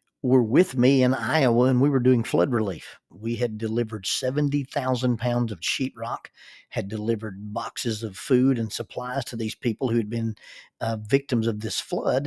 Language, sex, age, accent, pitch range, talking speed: English, male, 40-59, American, 115-135 Hz, 180 wpm